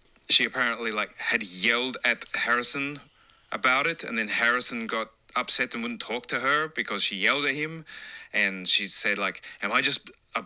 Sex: male